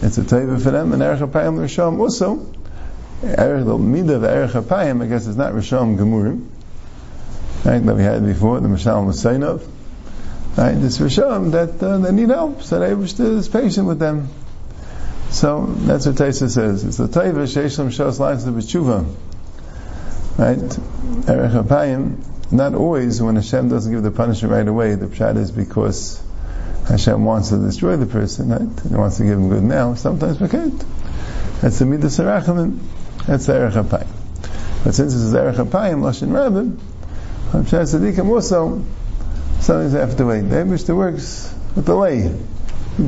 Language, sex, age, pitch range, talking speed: English, male, 50-69, 100-145 Hz, 160 wpm